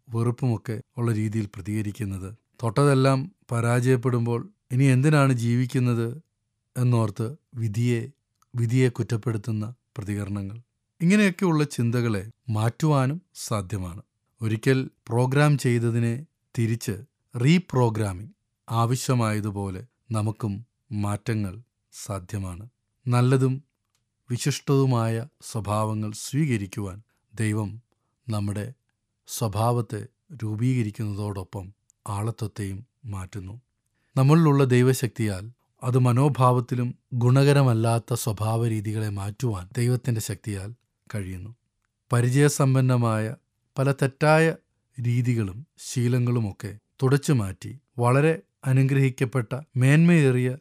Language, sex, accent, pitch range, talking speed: English, male, Indian, 110-130 Hz, 70 wpm